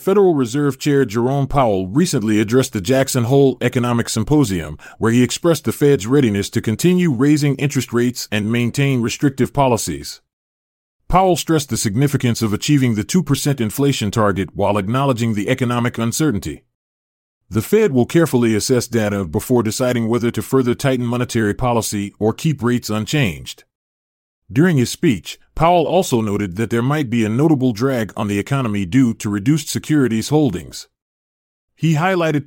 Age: 30-49